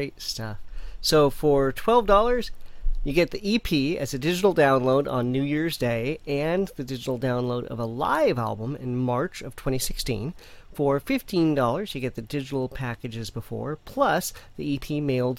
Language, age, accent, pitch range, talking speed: English, 40-59, American, 125-150 Hz, 155 wpm